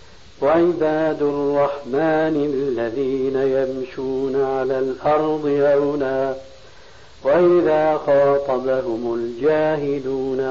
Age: 60-79